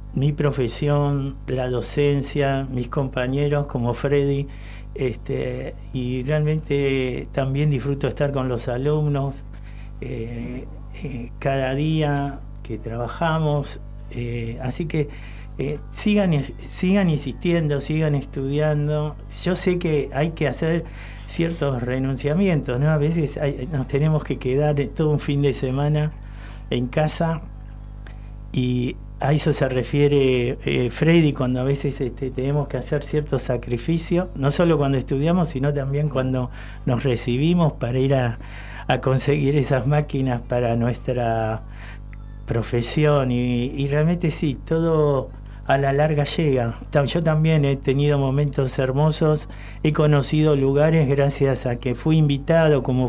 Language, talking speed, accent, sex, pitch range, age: Spanish, 130 wpm, Argentinian, male, 125-150 Hz, 50-69